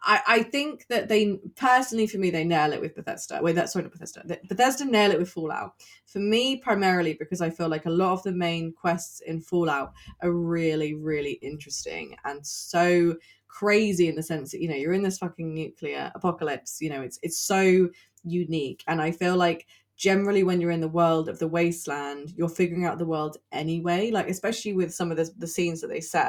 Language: English